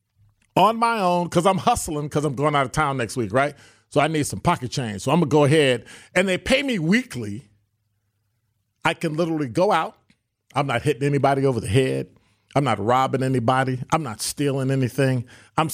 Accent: American